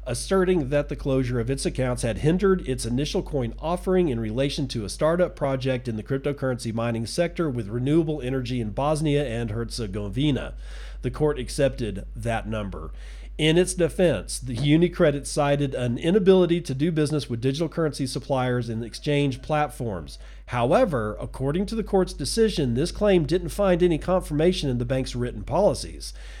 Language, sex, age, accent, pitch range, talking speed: English, male, 40-59, American, 120-165 Hz, 160 wpm